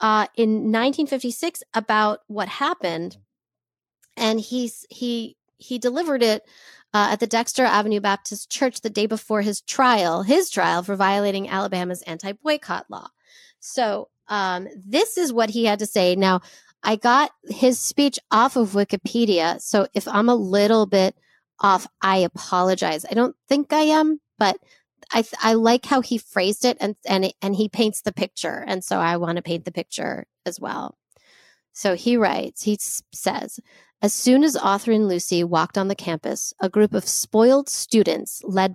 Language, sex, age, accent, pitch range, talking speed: English, female, 30-49, American, 185-235 Hz, 165 wpm